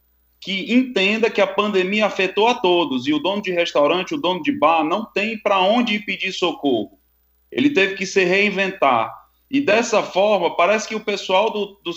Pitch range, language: 160-200 Hz, Portuguese